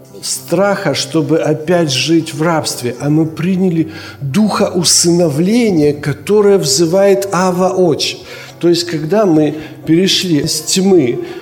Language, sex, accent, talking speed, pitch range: Ukrainian, male, native, 110 wpm, 160-200 Hz